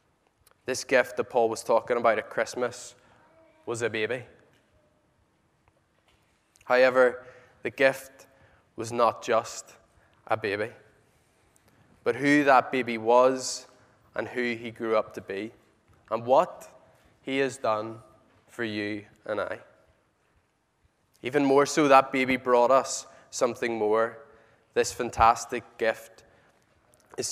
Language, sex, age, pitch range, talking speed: English, male, 20-39, 115-135 Hz, 120 wpm